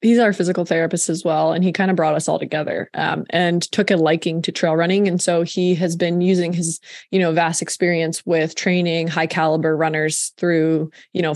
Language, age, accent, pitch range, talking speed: English, 20-39, American, 170-200 Hz, 215 wpm